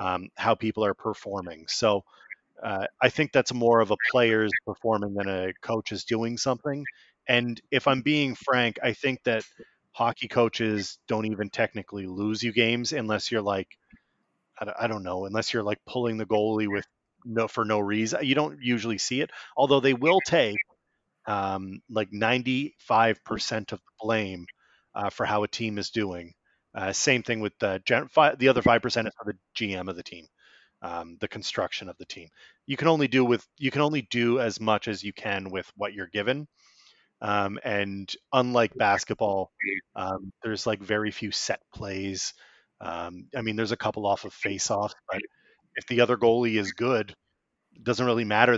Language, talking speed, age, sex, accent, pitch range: English, 190 wpm, 30-49, male, American, 105-125 Hz